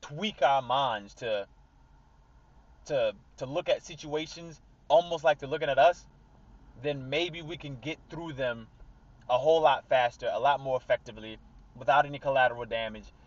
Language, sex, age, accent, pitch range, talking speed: English, male, 20-39, American, 120-150 Hz, 155 wpm